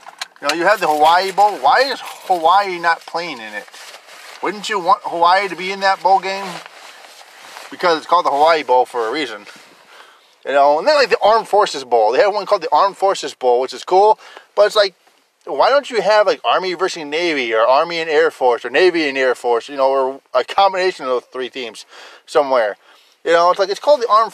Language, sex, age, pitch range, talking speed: English, male, 20-39, 145-210 Hz, 225 wpm